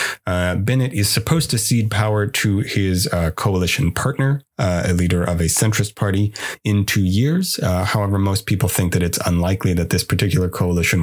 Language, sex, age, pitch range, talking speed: English, male, 30-49, 85-115 Hz, 185 wpm